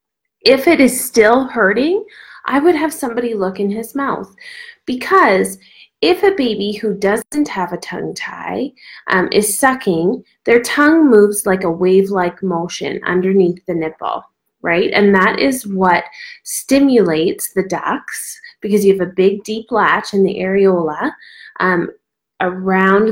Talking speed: 145 wpm